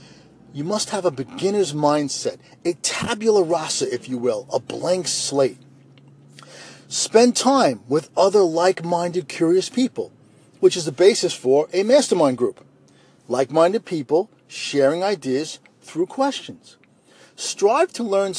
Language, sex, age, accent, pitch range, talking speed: English, male, 40-59, American, 145-215 Hz, 135 wpm